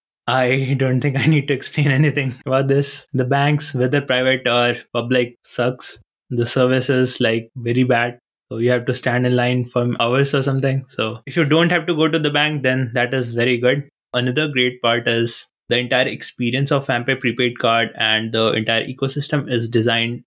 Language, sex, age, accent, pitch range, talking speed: English, male, 20-39, Indian, 120-140 Hz, 195 wpm